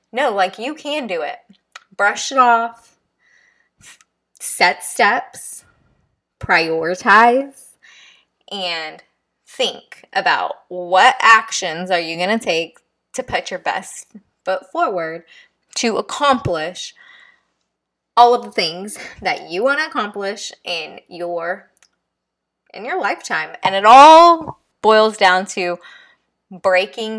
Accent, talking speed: American, 110 wpm